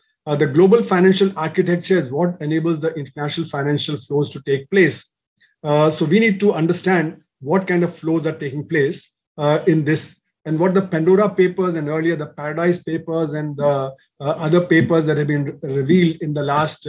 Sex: male